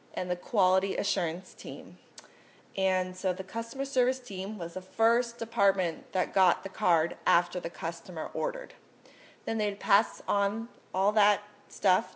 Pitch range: 190-235 Hz